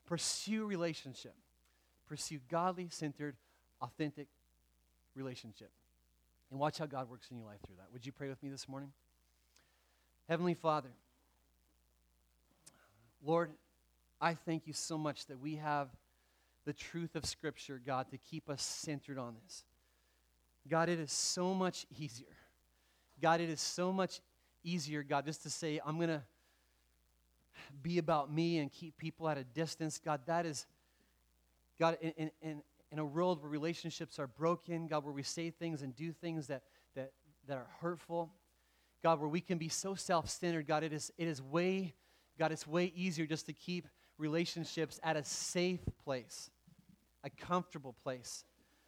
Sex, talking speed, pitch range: male, 155 wpm, 115-165 Hz